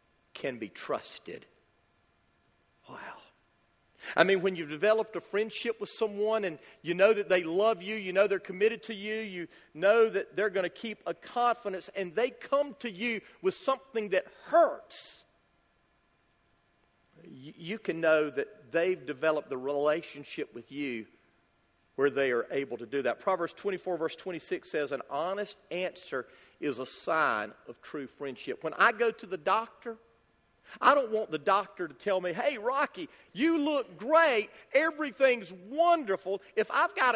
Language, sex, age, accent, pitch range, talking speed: English, male, 50-69, American, 185-270 Hz, 160 wpm